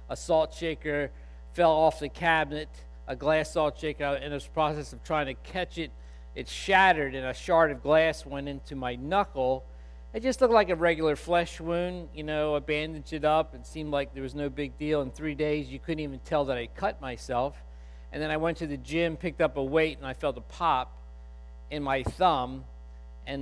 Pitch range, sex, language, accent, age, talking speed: 130-175 Hz, male, English, American, 50-69, 215 wpm